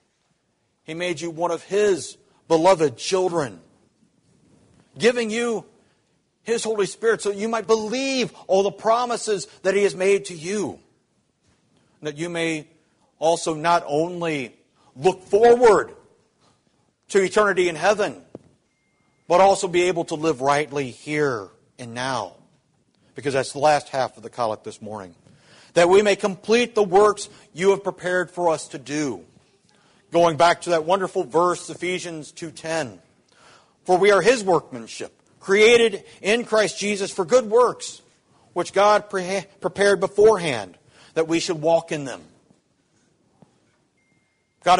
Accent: American